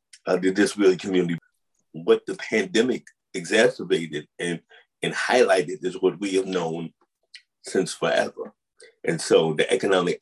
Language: English